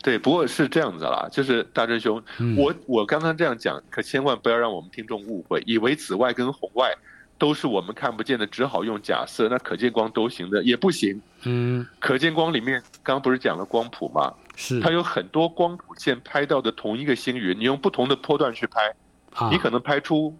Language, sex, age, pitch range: Chinese, male, 50-69, 115-150 Hz